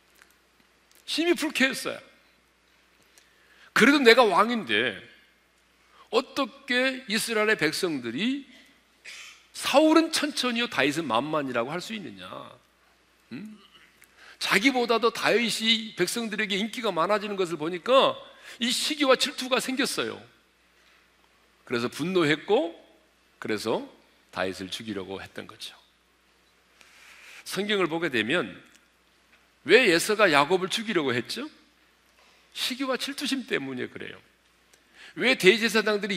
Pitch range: 185-260 Hz